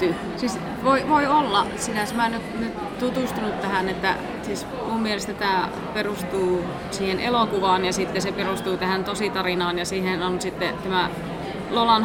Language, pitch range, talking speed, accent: Finnish, 180-205 Hz, 150 wpm, native